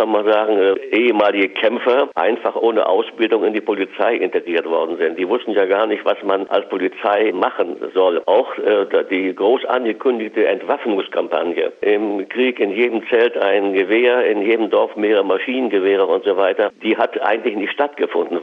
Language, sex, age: German, male, 60-79